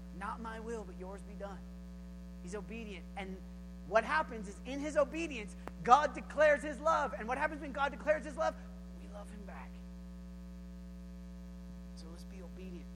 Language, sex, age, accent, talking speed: English, male, 30-49, American, 165 wpm